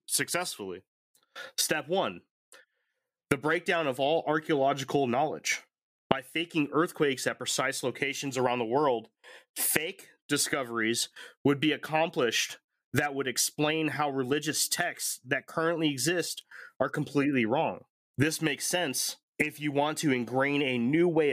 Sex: male